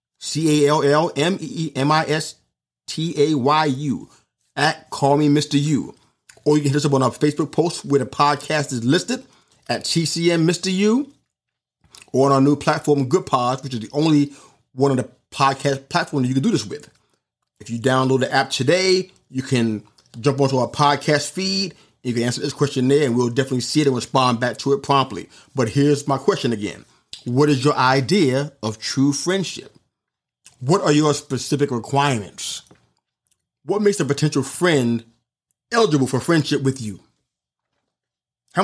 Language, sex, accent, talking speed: English, male, American, 165 wpm